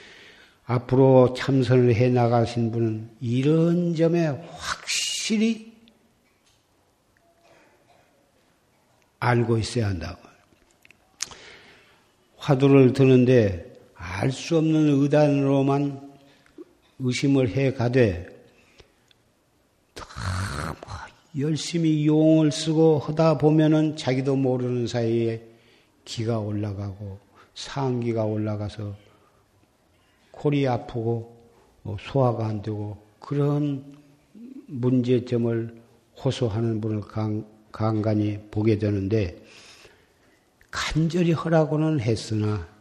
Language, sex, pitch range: Korean, male, 110-145 Hz